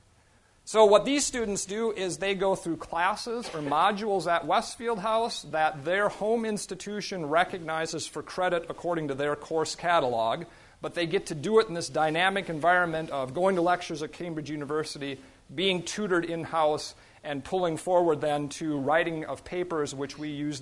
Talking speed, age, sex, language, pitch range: 170 wpm, 40-59, male, English, 150-200 Hz